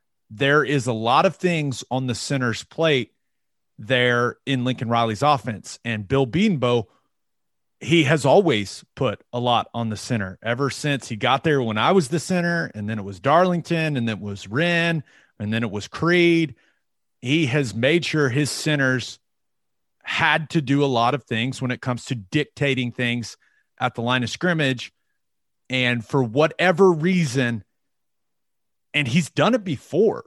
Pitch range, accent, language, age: 115-150 Hz, American, English, 30-49